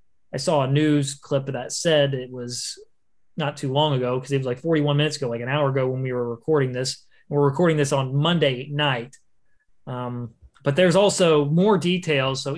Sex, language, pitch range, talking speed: male, English, 140-170 Hz, 205 wpm